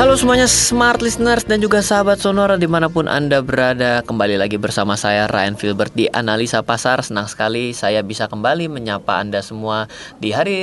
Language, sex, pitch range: Indonesian, male, 105-155 Hz